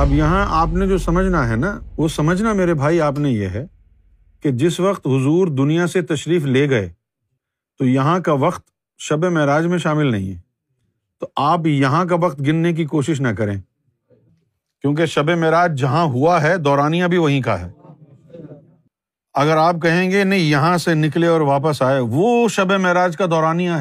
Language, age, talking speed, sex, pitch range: Urdu, 50-69, 180 wpm, male, 135-180 Hz